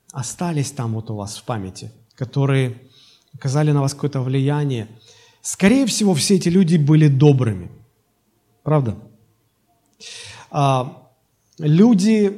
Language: Russian